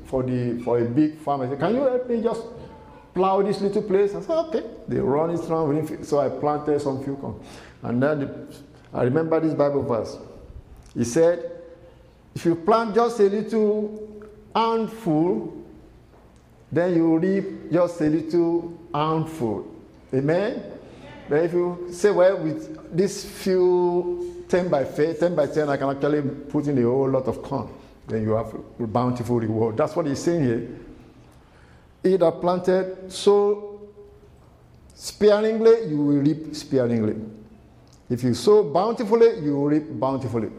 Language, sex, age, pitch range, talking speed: English, male, 50-69, 135-190 Hz, 155 wpm